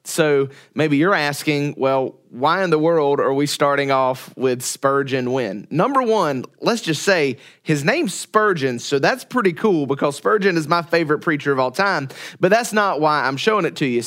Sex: male